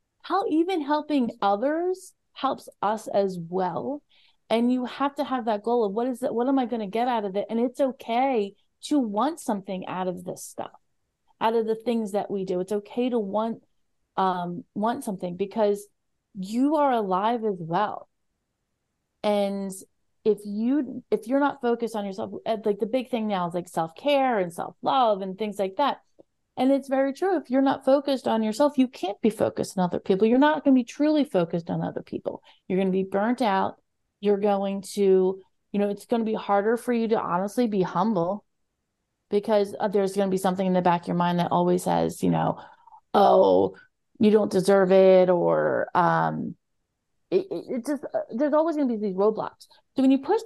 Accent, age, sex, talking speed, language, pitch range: American, 30-49, female, 200 wpm, English, 195-260 Hz